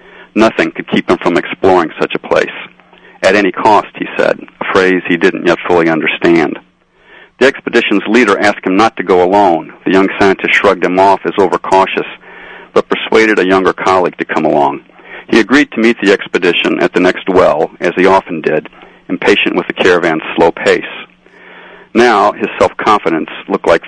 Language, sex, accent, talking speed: English, male, American, 180 wpm